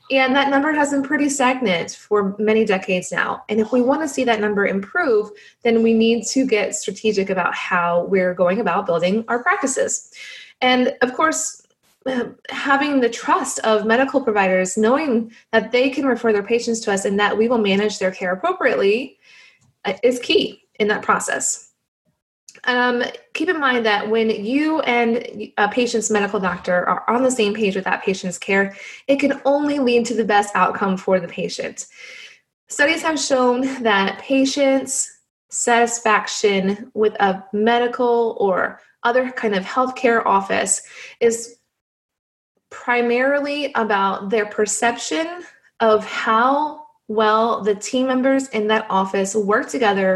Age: 20-39